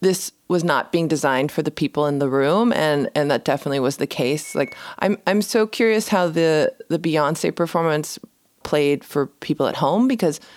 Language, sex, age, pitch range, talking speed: English, female, 20-39, 135-175 Hz, 195 wpm